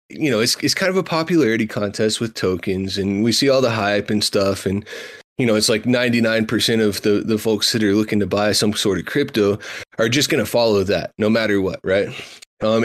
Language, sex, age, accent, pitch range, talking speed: English, male, 20-39, American, 100-115 Hz, 230 wpm